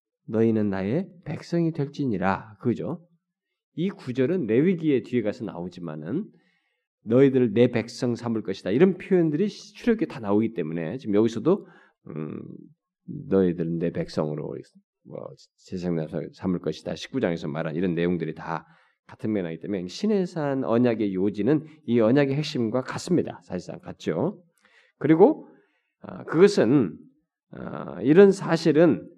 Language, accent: Korean, native